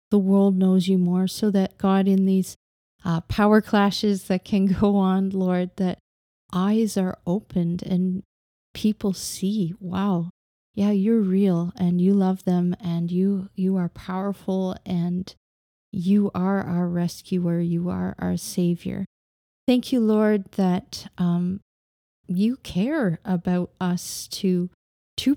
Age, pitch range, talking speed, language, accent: 30-49, 180-210 Hz, 135 wpm, English, American